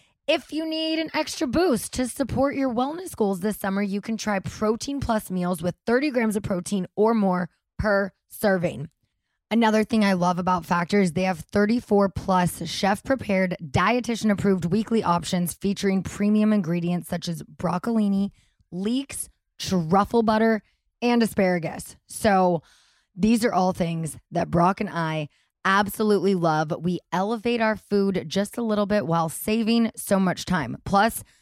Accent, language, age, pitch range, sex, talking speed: American, English, 20-39, 175-215 Hz, female, 155 wpm